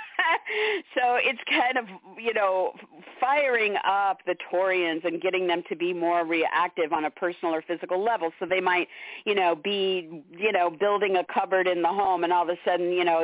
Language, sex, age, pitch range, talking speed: English, female, 50-69, 155-190 Hz, 200 wpm